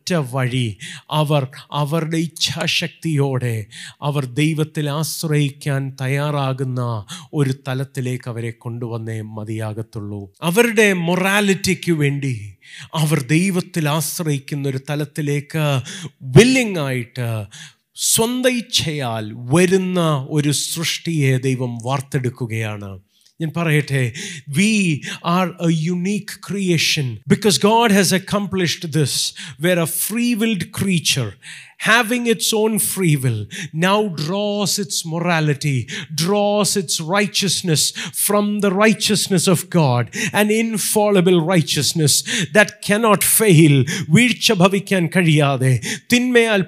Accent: native